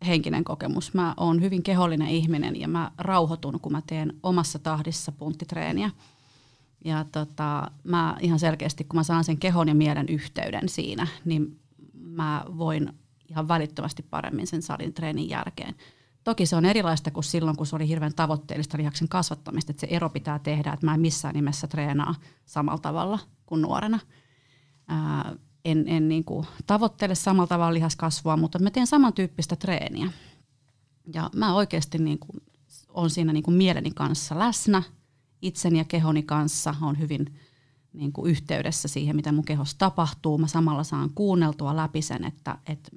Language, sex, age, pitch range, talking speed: Finnish, female, 30-49, 150-170 Hz, 155 wpm